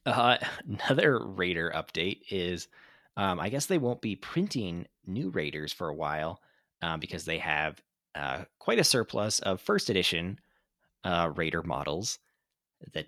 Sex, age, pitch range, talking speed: male, 30-49, 85-130 Hz, 145 wpm